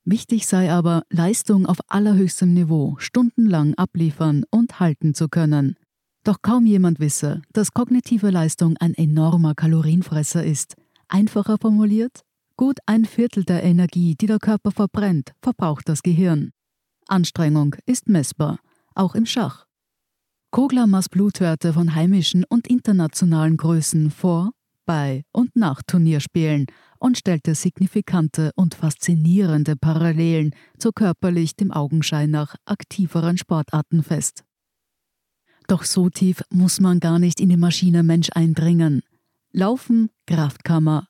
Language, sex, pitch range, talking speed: German, female, 160-200 Hz, 120 wpm